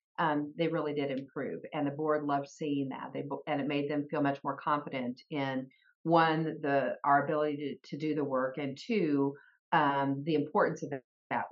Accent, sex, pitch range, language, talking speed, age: American, female, 140-170 Hz, English, 195 wpm, 50-69